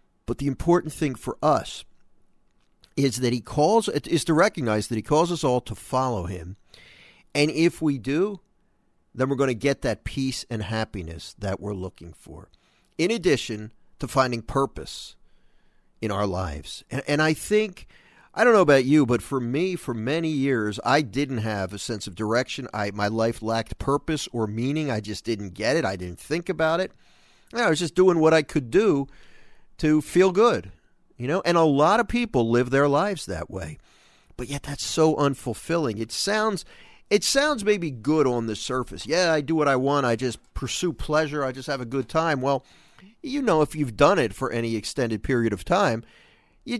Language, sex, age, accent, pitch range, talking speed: English, male, 50-69, American, 110-160 Hz, 195 wpm